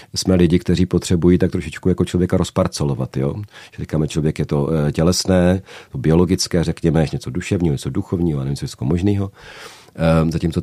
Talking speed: 165 wpm